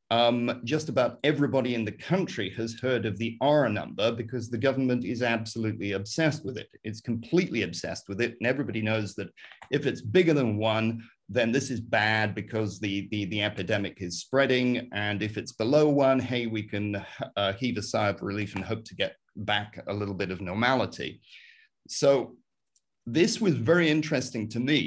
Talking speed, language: 185 wpm, English